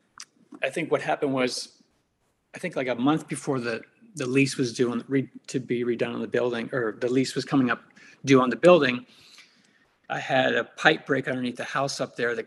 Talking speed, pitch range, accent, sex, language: 205 wpm, 120-145 Hz, American, male, English